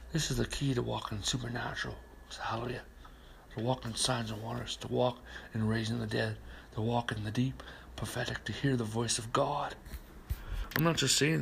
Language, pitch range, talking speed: English, 105-125 Hz, 190 wpm